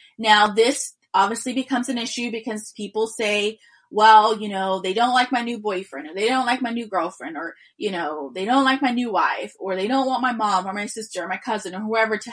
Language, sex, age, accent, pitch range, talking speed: English, female, 20-39, American, 200-250 Hz, 240 wpm